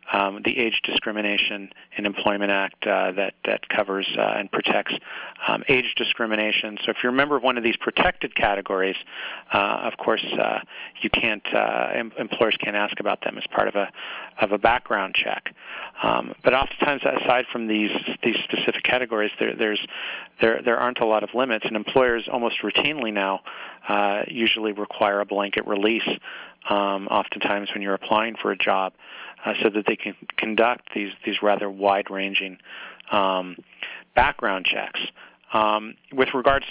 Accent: American